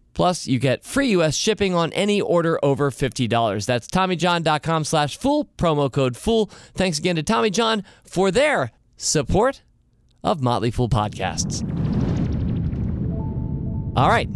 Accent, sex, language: American, male, English